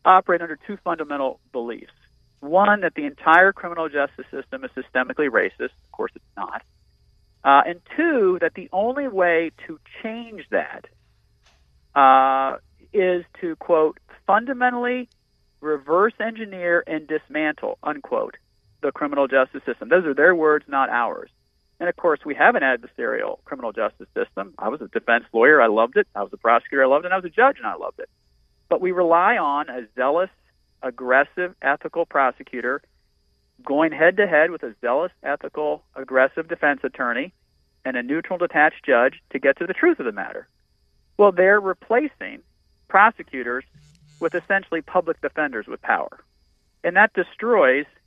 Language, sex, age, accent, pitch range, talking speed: English, male, 40-59, American, 140-200 Hz, 160 wpm